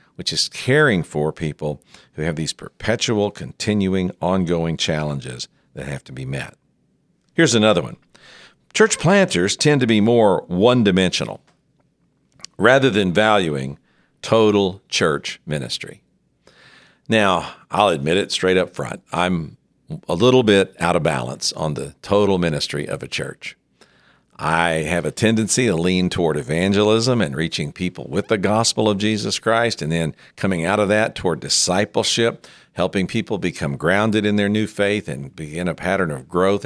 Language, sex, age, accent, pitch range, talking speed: English, male, 50-69, American, 80-105 Hz, 150 wpm